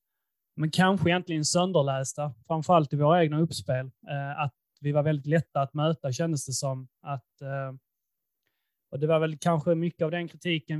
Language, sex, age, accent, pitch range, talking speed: Swedish, male, 20-39, native, 140-165 Hz, 160 wpm